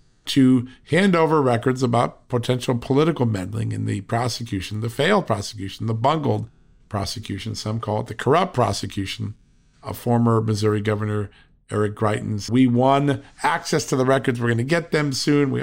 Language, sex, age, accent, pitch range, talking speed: English, male, 50-69, American, 105-135 Hz, 160 wpm